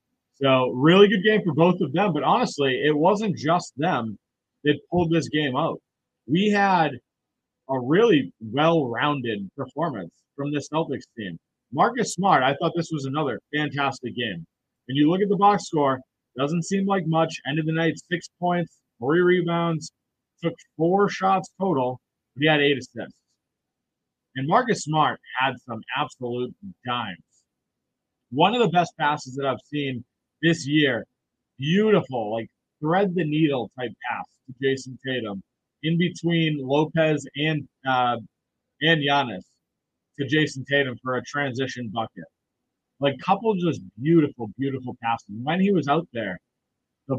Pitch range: 130-165 Hz